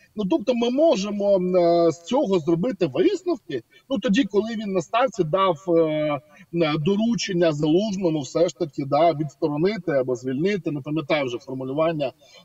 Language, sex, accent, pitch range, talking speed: Ukrainian, male, native, 175-245 Hz, 130 wpm